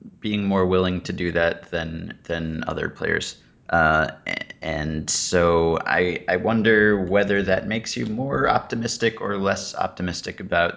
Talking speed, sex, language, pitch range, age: 145 wpm, male, English, 85-105 Hz, 30-49